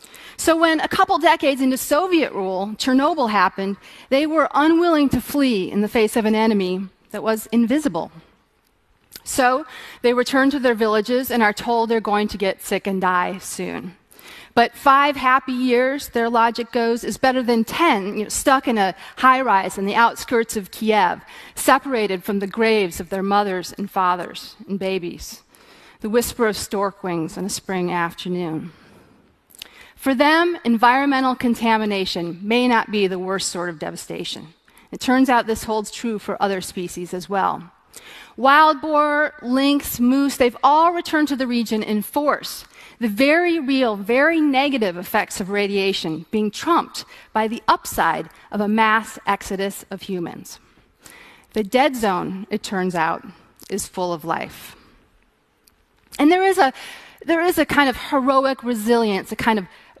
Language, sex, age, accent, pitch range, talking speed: English, female, 30-49, American, 200-270 Hz, 160 wpm